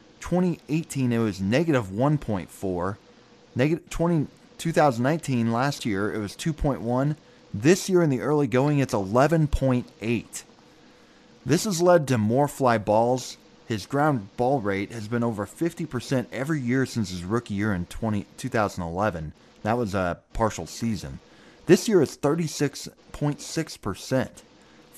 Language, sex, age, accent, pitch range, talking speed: English, male, 30-49, American, 105-145 Hz, 120 wpm